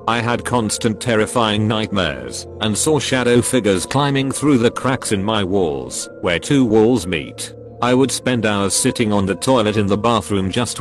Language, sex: English, male